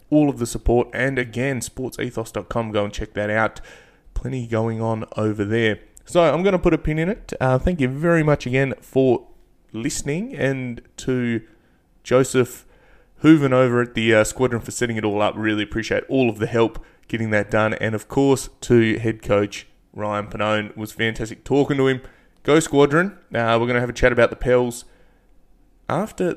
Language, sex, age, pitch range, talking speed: English, male, 20-39, 110-130 Hz, 195 wpm